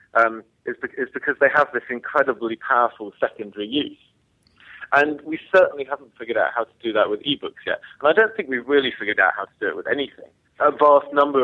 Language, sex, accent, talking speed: English, male, British, 215 wpm